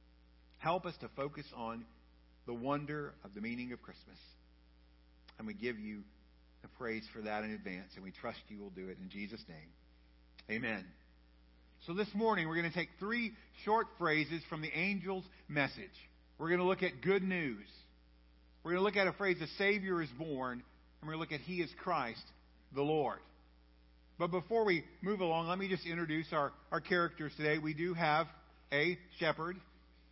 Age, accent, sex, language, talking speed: 50-69, American, male, English, 185 wpm